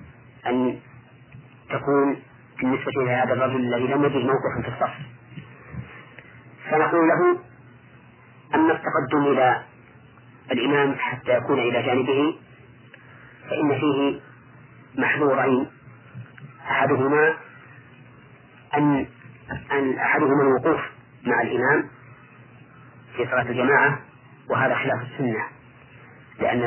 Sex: male